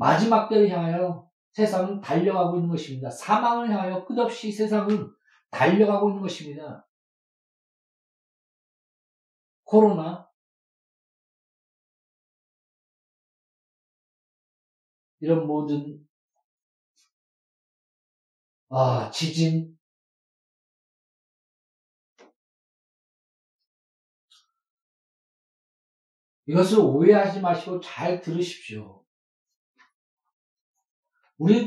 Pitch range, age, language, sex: 165-205 Hz, 60-79, Korean, male